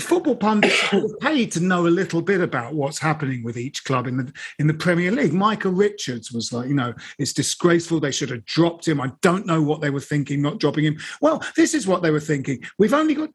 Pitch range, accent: 150-210 Hz, British